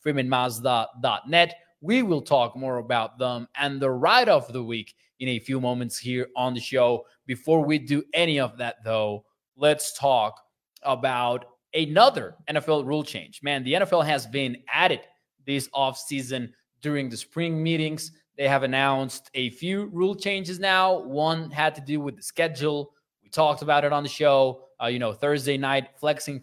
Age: 20-39